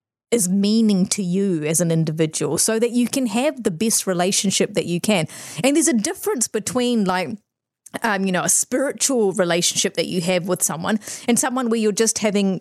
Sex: female